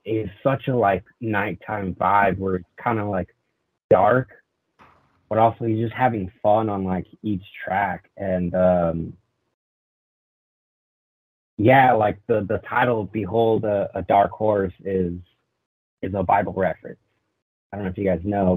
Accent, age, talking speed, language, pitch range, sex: American, 30-49, 150 wpm, English, 90-110 Hz, male